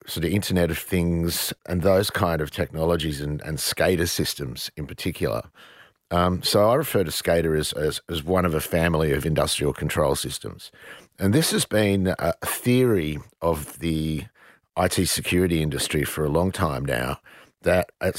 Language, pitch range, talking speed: English, 80-95 Hz, 170 wpm